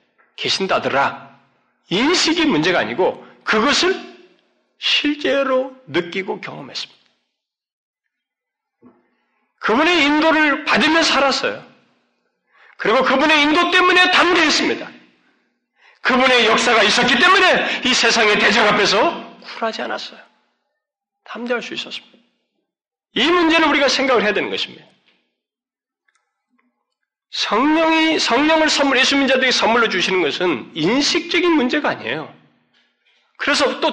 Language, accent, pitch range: Korean, native, 240-310 Hz